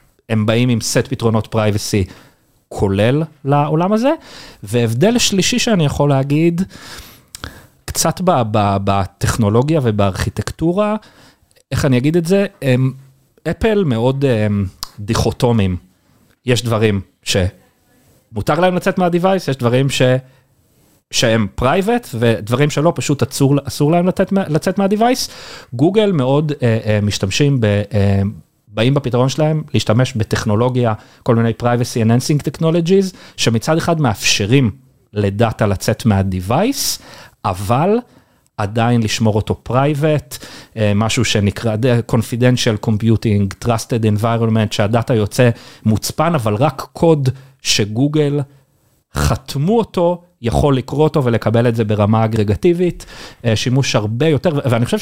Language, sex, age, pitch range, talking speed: Hebrew, male, 40-59, 110-150 Hz, 110 wpm